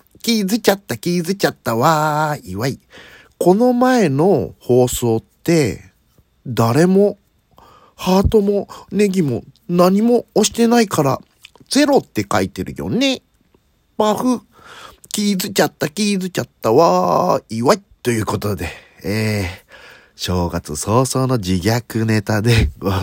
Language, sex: Japanese, male